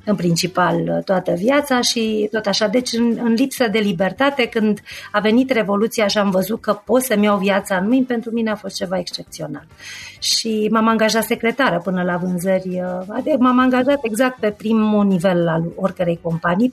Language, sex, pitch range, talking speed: Romanian, female, 195-250 Hz, 180 wpm